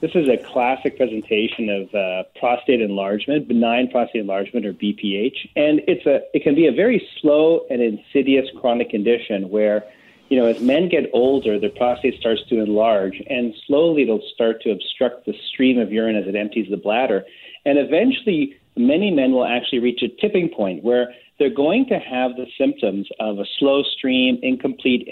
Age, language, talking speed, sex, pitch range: 40-59, English, 180 wpm, male, 110-140 Hz